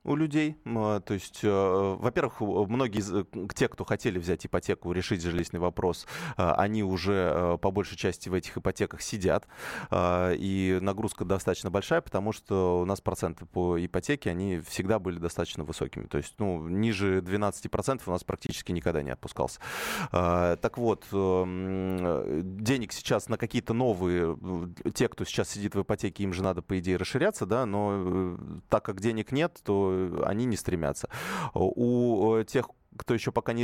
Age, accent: 20-39, native